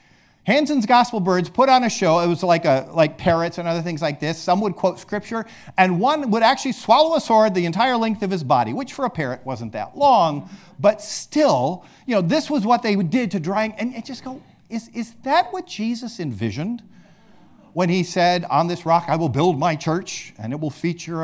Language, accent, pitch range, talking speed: English, American, 160-255 Hz, 220 wpm